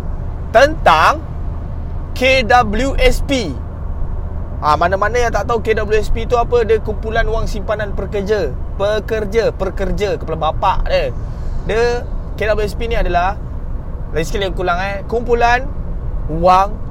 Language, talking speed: Malay, 115 wpm